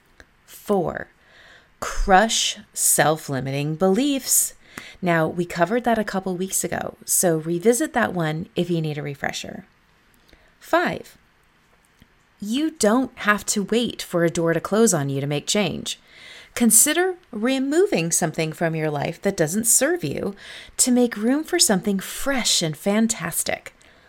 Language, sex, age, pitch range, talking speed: English, female, 30-49, 170-235 Hz, 135 wpm